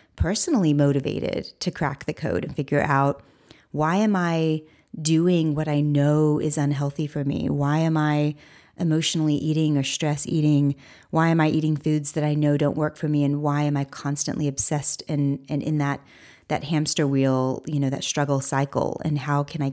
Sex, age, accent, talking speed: female, 30-49, American, 190 wpm